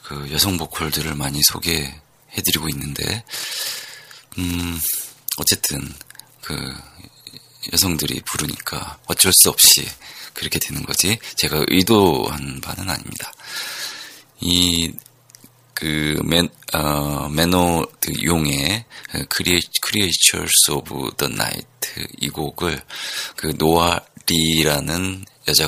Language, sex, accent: Korean, male, native